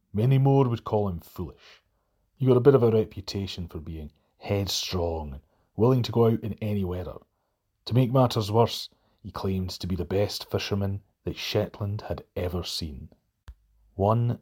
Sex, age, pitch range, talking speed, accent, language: male, 30-49, 90-115 Hz, 170 wpm, British, English